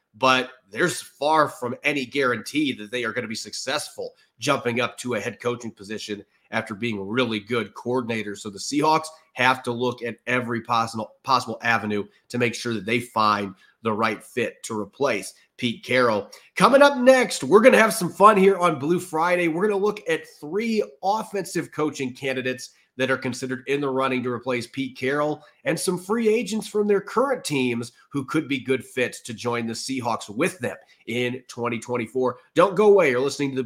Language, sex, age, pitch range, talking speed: English, male, 30-49, 120-180 Hz, 195 wpm